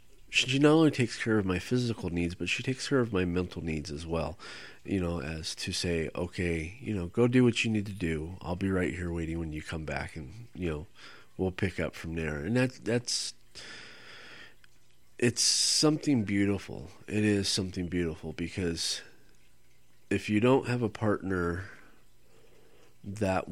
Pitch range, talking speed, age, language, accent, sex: 85-105 Hz, 175 wpm, 30-49, English, American, male